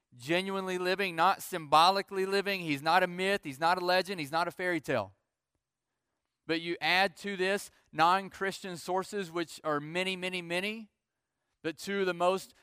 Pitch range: 150-190 Hz